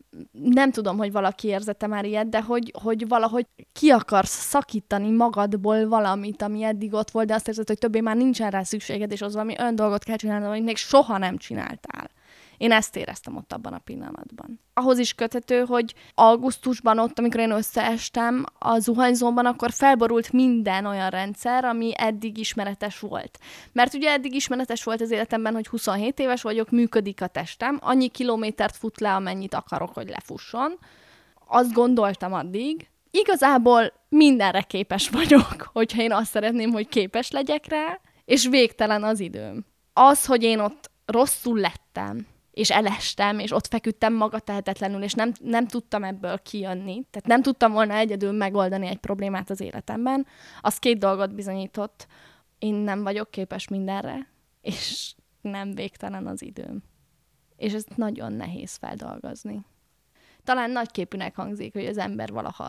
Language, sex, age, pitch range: Hungarian, female, 10-29, 205-240 Hz